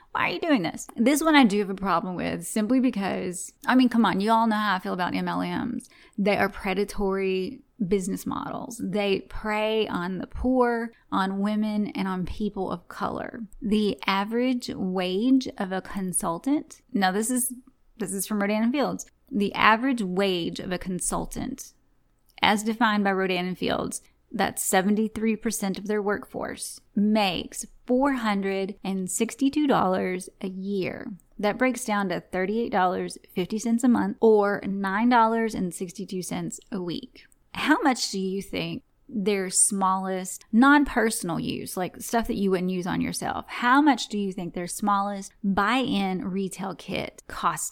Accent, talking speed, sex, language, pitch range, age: American, 145 wpm, female, English, 190-235 Hz, 30-49